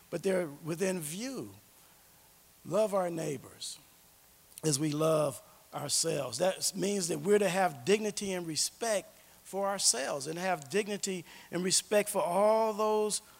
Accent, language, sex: American, English, male